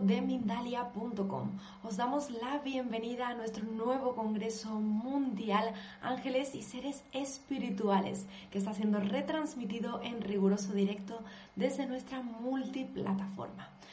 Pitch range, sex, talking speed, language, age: 200-235 Hz, female, 100 wpm, Spanish, 20-39